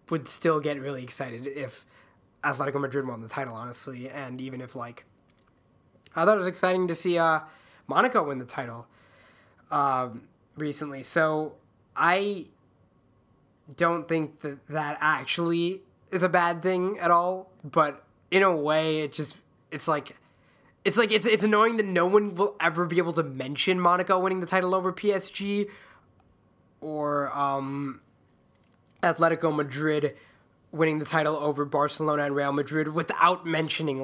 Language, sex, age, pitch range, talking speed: English, male, 20-39, 135-170 Hz, 150 wpm